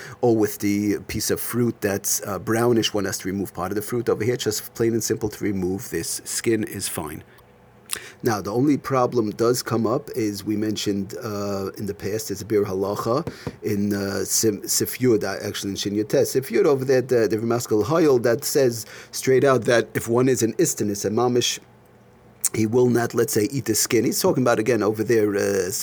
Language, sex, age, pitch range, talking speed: English, male, 40-59, 105-130 Hz, 210 wpm